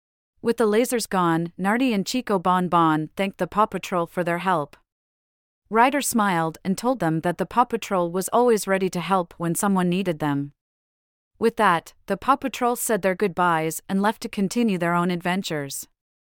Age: 30-49